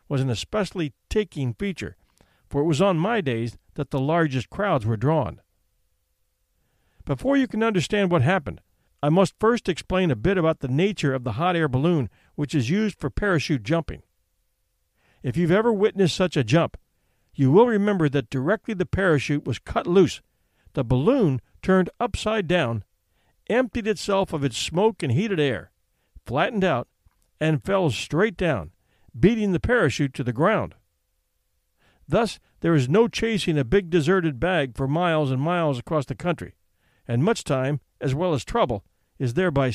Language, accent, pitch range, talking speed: English, American, 120-190 Hz, 165 wpm